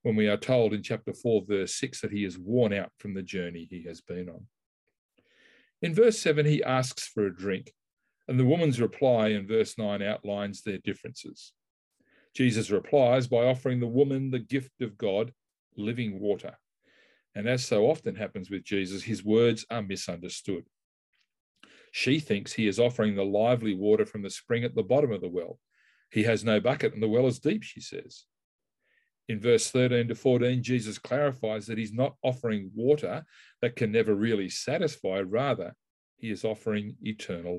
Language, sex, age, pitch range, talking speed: English, male, 40-59, 105-125 Hz, 180 wpm